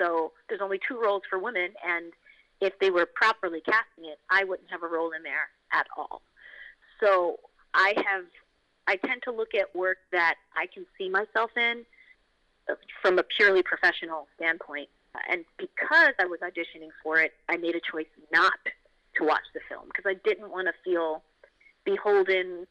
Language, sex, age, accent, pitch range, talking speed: English, female, 30-49, American, 175-255 Hz, 175 wpm